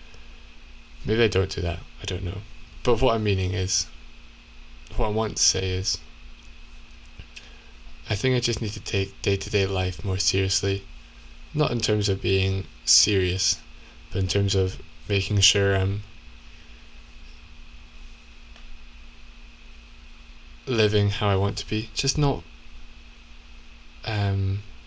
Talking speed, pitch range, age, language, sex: 125 wpm, 80-110 Hz, 20-39, English, male